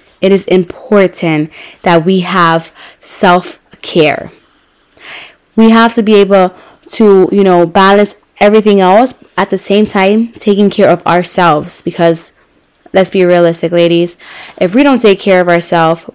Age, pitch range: 20-39, 175-210 Hz